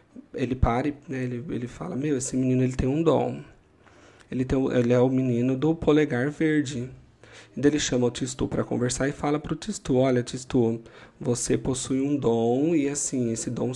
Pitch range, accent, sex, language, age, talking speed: 125-150 Hz, Brazilian, male, Portuguese, 40-59, 205 wpm